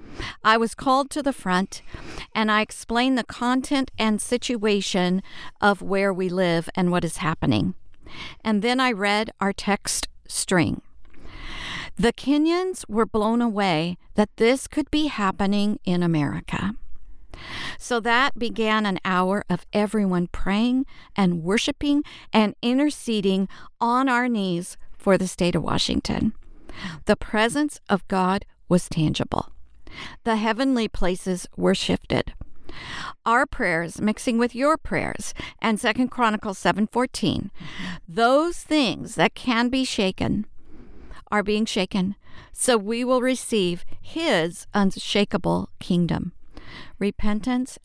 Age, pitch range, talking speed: 50-69, 185-245 Hz, 125 wpm